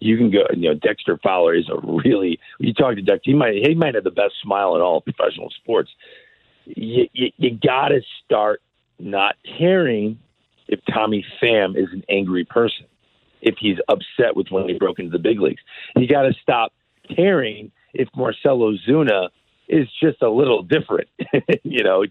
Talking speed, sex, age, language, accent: 185 wpm, male, 50-69, English, American